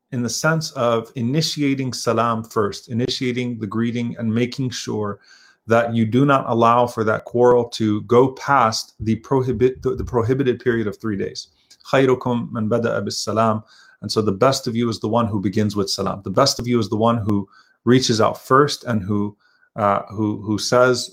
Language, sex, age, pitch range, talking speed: English, male, 30-49, 110-125 Hz, 175 wpm